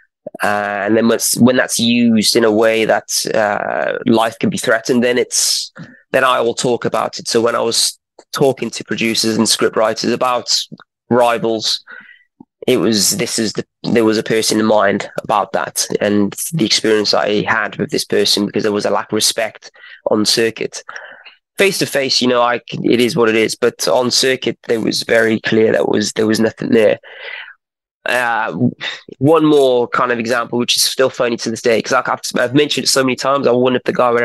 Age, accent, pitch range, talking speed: 20-39, British, 110-130 Hz, 200 wpm